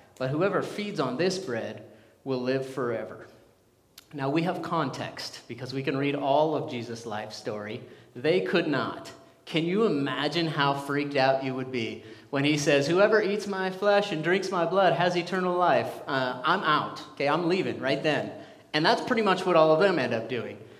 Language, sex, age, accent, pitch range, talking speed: English, male, 30-49, American, 125-170 Hz, 195 wpm